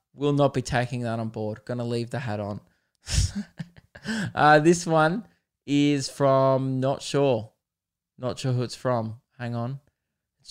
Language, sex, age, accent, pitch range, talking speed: English, male, 20-39, Australian, 120-150 Hz, 155 wpm